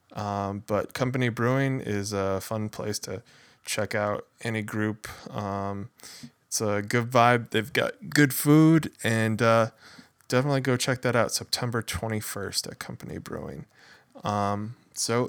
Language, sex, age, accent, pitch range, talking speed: English, male, 20-39, American, 110-130 Hz, 140 wpm